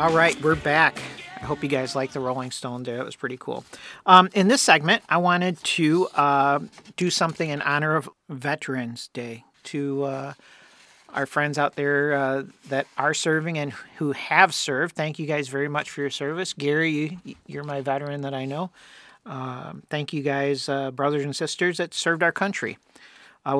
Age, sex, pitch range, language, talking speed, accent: 40-59, male, 140-165 Hz, English, 190 wpm, American